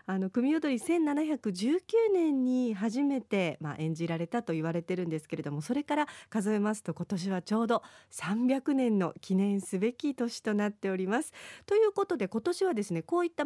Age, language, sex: 40-59, Japanese, female